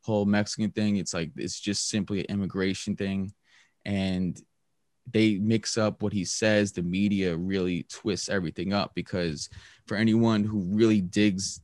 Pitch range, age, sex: 95-105 Hz, 20-39, male